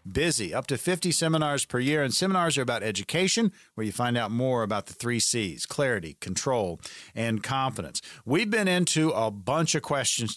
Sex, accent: male, American